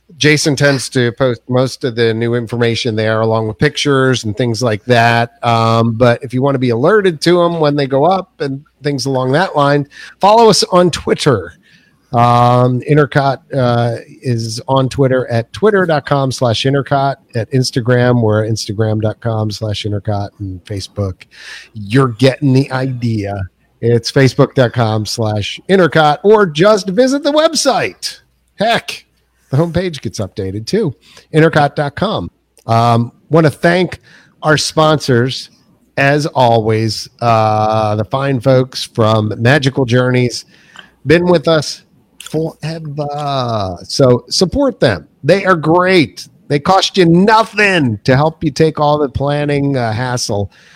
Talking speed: 135 wpm